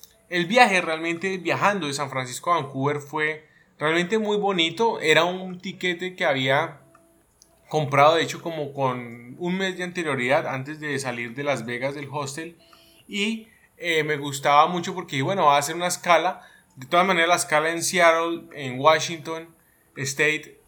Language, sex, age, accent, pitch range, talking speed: Spanish, male, 20-39, Colombian, 135-165 Hz, 165 wpm